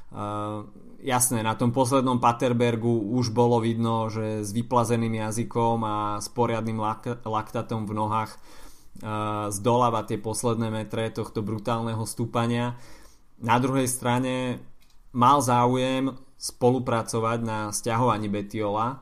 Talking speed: 115 wpm